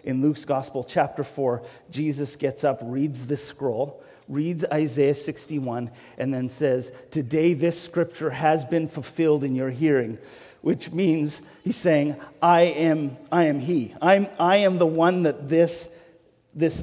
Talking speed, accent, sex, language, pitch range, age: 155 wpm, American, male, English, 140-170 Hz, 40-59